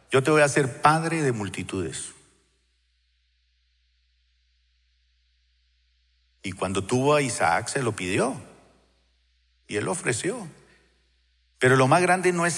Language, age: Spanish, 50-69